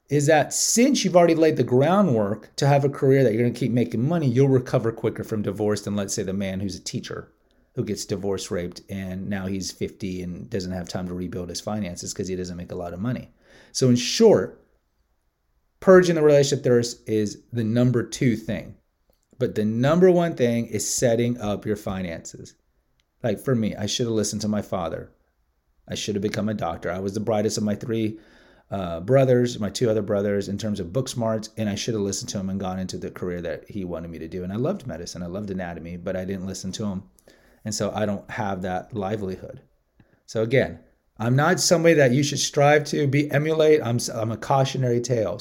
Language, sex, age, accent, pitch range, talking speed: English, male, 30-49, American, 95-130 Hz, 220 wpm